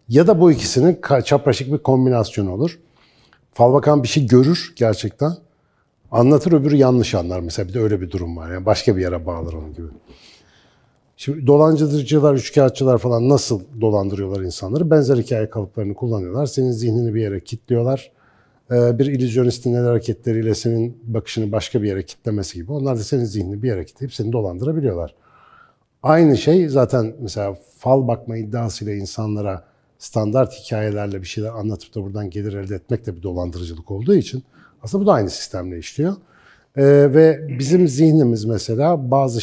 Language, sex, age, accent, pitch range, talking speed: Turkish, male, 50-69, native, 105-140 Hz, 160 wpm